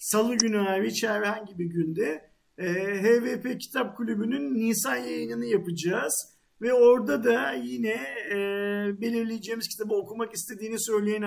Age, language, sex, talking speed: 50-69, Turkish, male, 110 wpm